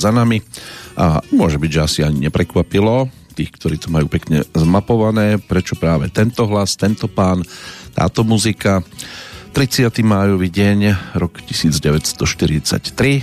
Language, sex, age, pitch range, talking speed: Slovak, male, 40-59, 85-110 Hz, 125 wpm